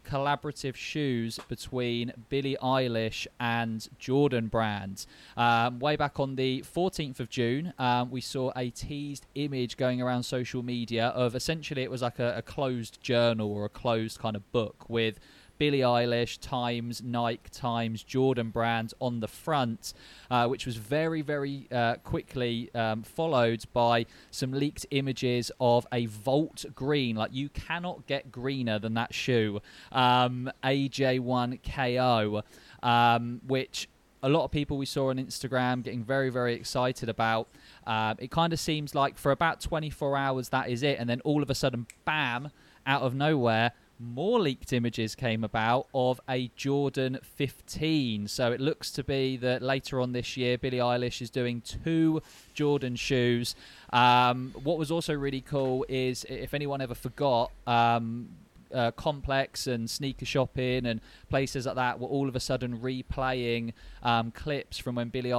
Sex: male